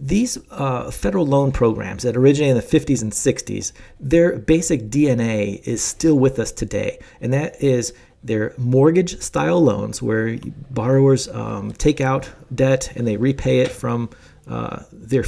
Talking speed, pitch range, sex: 155 wpm, 115-145 Hz, male